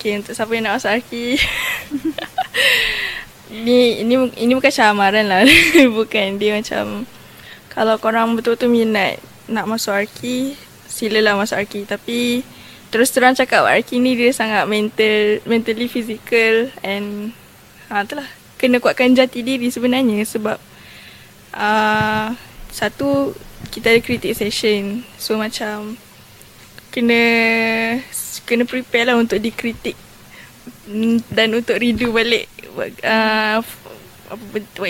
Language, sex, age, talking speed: Malay, female, 10-29, 115 wpm